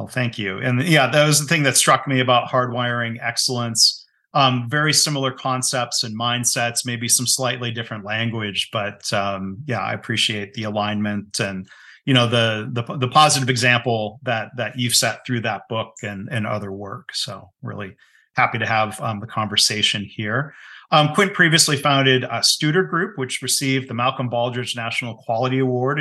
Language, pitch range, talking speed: English, 115-135 Hz, 175 wpm